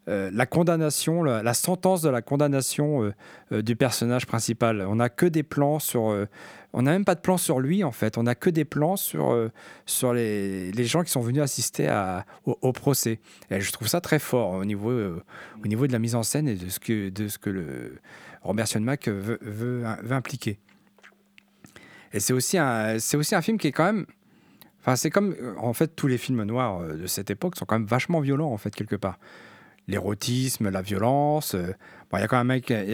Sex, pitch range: male, 110-150 Hz